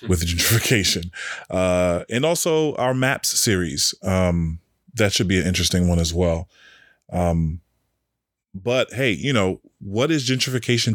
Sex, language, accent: male, English, American